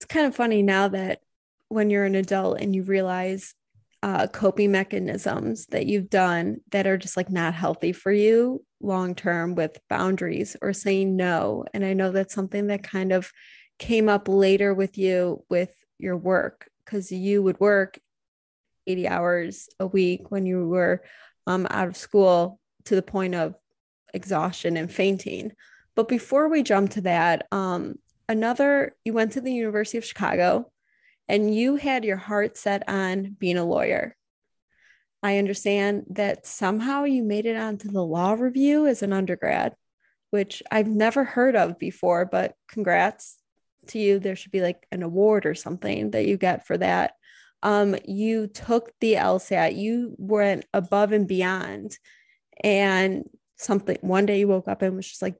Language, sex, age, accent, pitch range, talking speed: English, female, 20-39, American, 185-210 Hz, 165 wpm